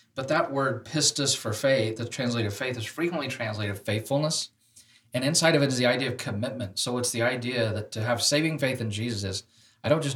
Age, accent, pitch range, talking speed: 40-59, American, 115-140 Hz, 215 wpm